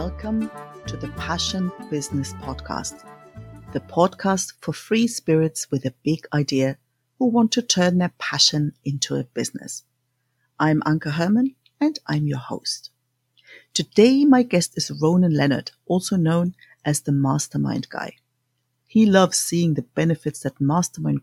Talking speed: 140 wpm